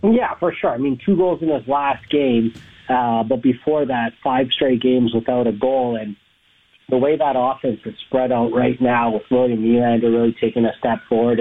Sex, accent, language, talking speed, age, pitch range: male, American, English, 210 wpm, 40-59, 115-135 Hz